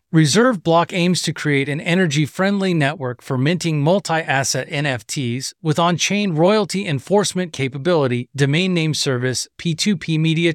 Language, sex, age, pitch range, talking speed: English, male, 30-49, 140-175 Hz, 140 wpm